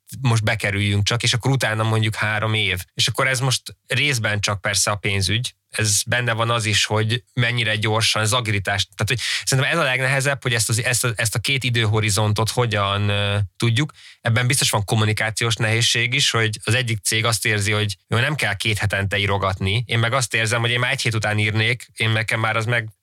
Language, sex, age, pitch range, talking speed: Hungarian, male, 20-39, 105-125 Hz, 205 wpm